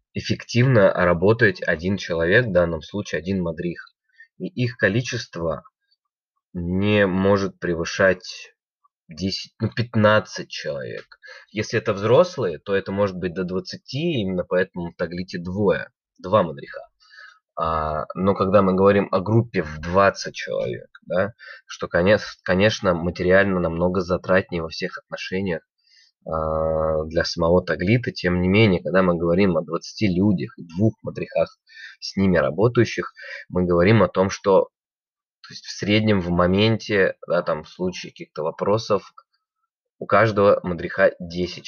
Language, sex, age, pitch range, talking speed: Russian, male, 20-39, 90-120 Hz, 125 wpm